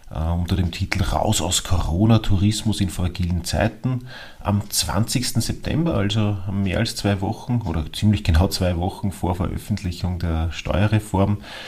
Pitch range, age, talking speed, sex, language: 90-115 Hz, 40-59, 140 wpm, male, German